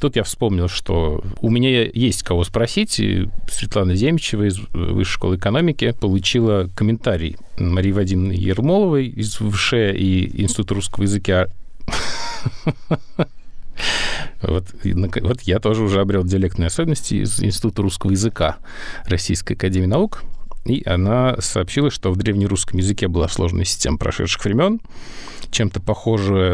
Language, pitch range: Russian, 95-115 Hz